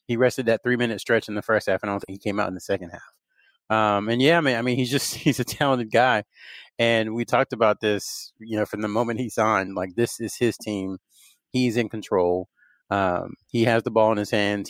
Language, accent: English, American